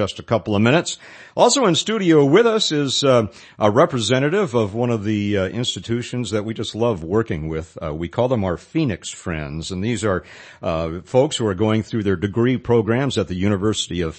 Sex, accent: male, American